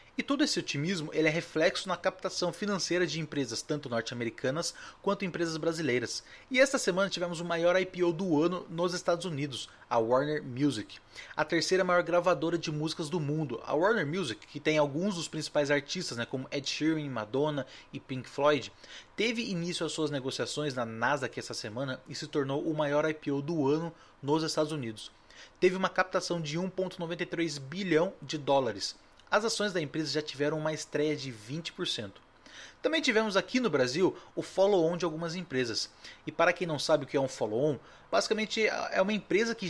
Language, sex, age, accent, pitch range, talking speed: Portuguese, male, 20-39, Brazilian, 140-180 Hz, 180 wpm